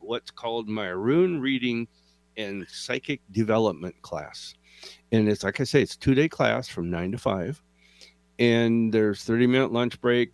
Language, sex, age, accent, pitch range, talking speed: English, male, 50-69, American, 90-125 Hz, 150 wpm